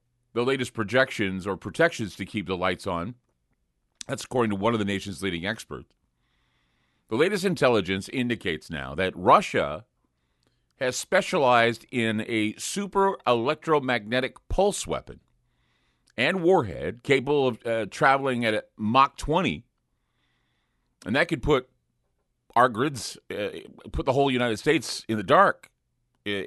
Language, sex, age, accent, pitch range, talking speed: English, male, 40-59, American, 95-120 Hz, 135 wpm